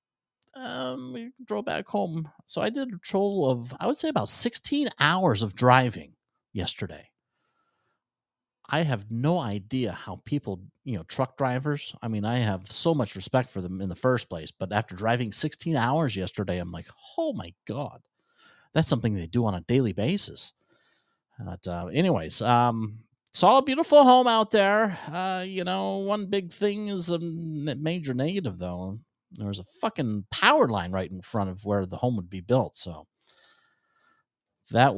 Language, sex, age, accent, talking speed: English, male, 40-59, American, 175 wpm